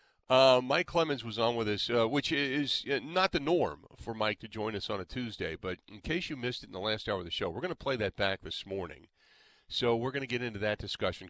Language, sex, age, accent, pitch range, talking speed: English, male, 40-59, American, 95-125 Hz, 265 wpm